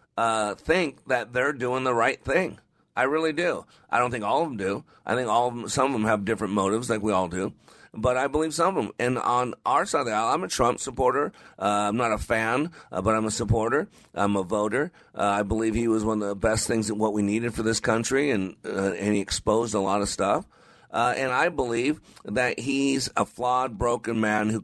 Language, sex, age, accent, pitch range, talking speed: English, male, 50-69, American, 100-125 Hz, 250 wpm